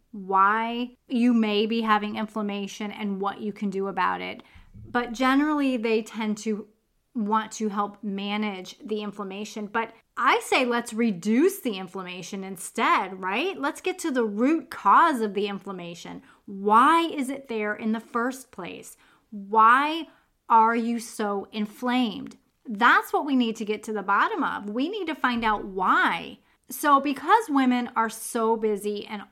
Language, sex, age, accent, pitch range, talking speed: English, female, 30-49, American, 210-250 Hz, 160 wpm